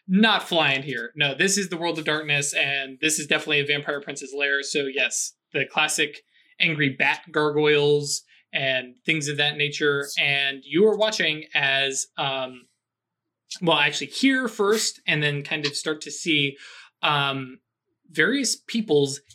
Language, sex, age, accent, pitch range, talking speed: English, male, 20-39, American, 140-165 Hz, 155 wpm